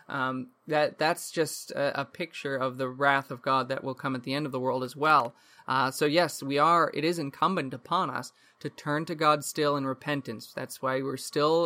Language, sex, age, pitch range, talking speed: English, male, 20-39, 130-155 Hz, 225 wpm